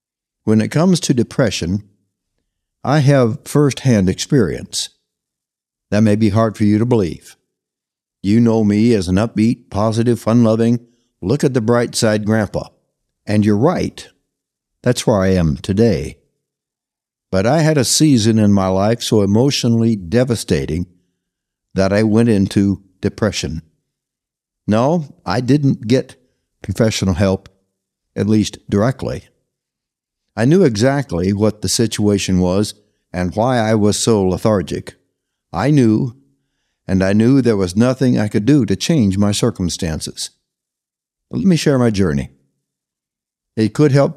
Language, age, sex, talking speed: English, 60-79, male, 130 wpm